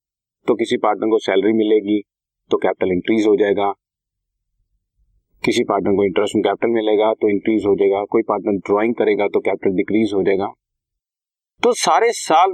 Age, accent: 40-59, native